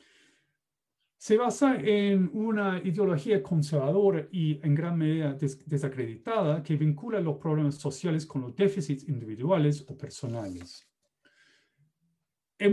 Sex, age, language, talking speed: male, 40-59, Spanish, 110 wpm